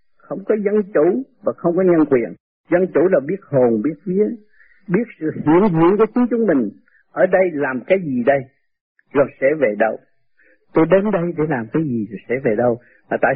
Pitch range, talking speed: 125-170 Hz, 205 wpm